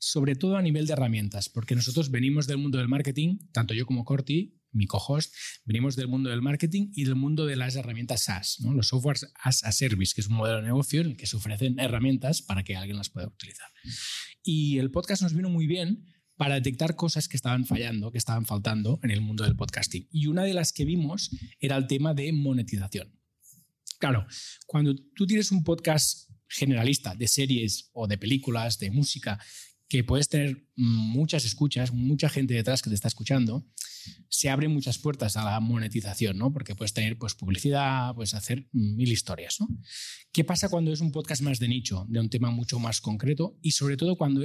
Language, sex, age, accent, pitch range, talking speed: Spanish, male, 20-39, Spanish, 115-150 Hz, 200 wpm